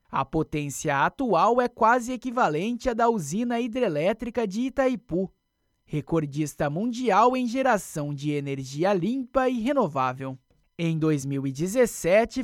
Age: 20-39